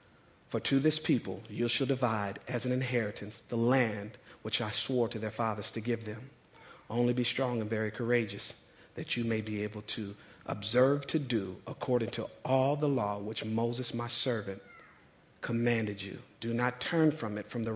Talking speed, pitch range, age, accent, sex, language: 185 wpm, 110-130 Hz, 50-69, American, male, English